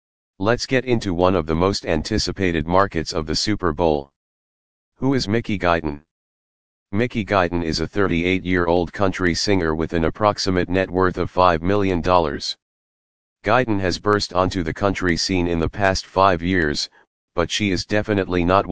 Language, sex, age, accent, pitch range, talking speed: English, male, 40-59, American, 80-100 Hz, 155 wpm